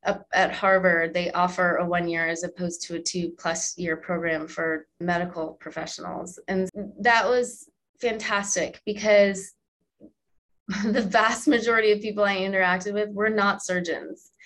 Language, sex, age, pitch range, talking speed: English, female, 20-39, 175-210 Hz, 135 wpm